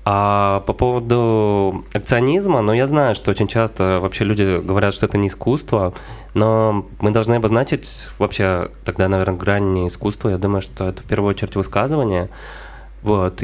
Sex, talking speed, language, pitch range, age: male, 160 wpm, Russian, 95-110 Hz, 20-39